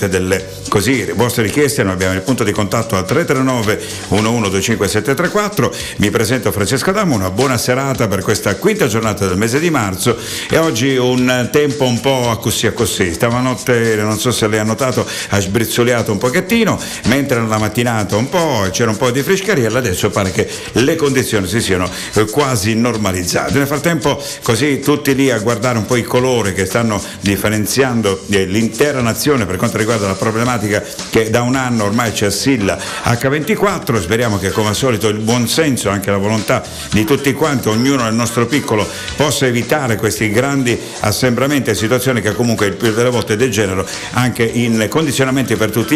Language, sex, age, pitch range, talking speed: Italian, male, 60-79, 105-130 Hz, 175 wpm